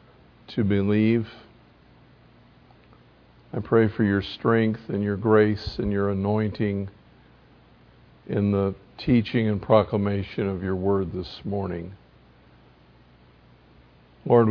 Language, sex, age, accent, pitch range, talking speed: English, male, 50-69, American, 100-135 Hz, 100 wpm